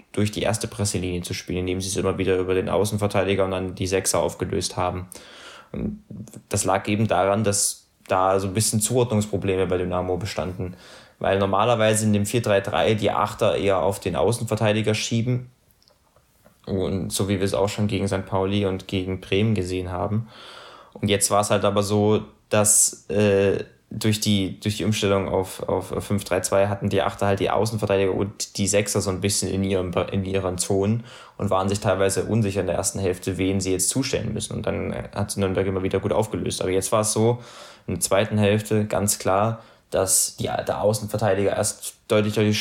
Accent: German